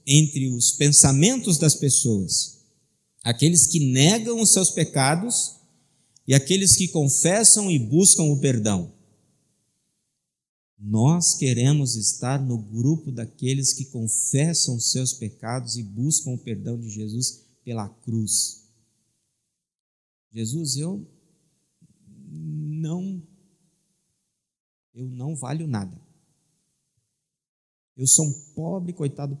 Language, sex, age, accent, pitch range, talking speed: Portuguese, male, 50-69, Brazilian, 115-160 Hz, 100 wpm